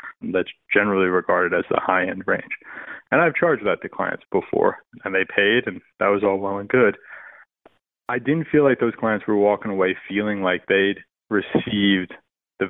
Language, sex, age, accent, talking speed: English, male, 30-49, American, 185 wpm